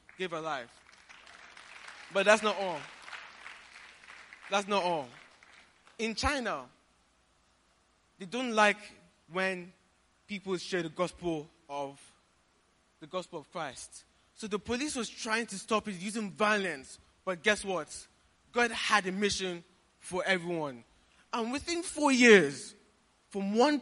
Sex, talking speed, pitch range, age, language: male, 125 wpm, 170-225 Hz, 20-39, English